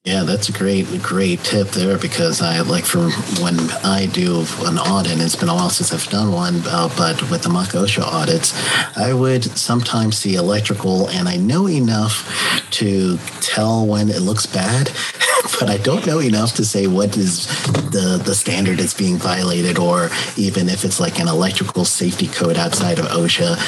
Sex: male